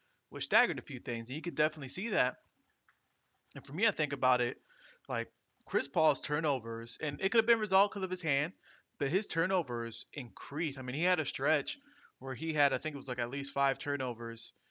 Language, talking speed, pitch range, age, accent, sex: English, 220 wpm, 125-160 Hz, 20-39, American, male